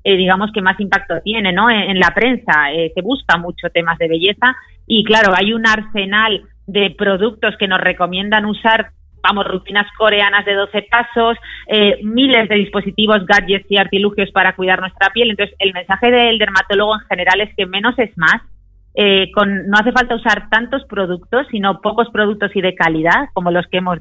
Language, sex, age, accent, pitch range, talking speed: Spanish, female, 30-49, Spanish, 180-205 Hz, 190 wpm